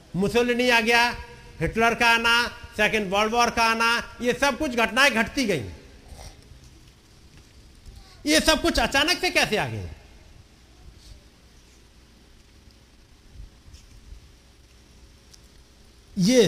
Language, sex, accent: Hindi, male, native